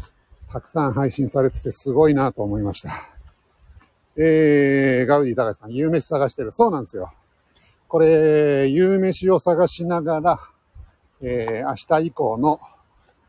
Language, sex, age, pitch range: Japanese, male, 60-79, 120-165 Hz